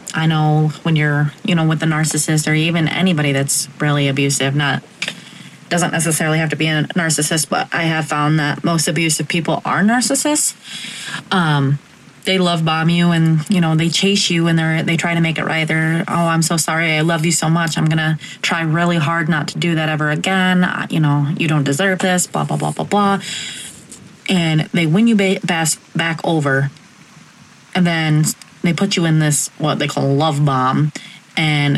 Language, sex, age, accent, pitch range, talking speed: English, female, 20-39, American, 150-170 Hz, 200 wpm